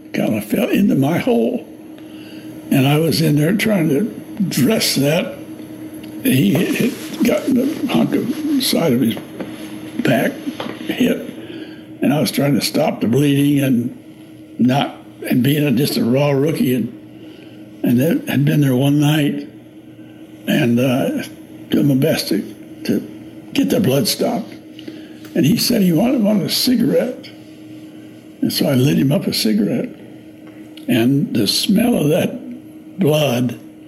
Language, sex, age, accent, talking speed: English, male, 60-79, American, 145 wpm